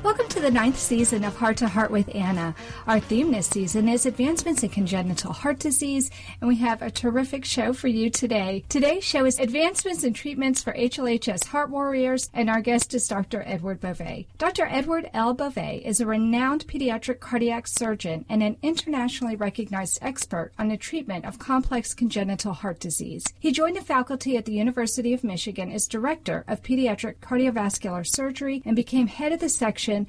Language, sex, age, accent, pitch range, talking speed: English, female, 40-59, American, 200-265 Hz, 185 wpm